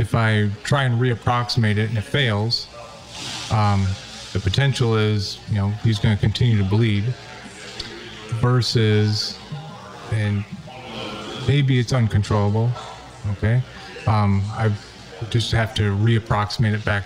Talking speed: 125 wpm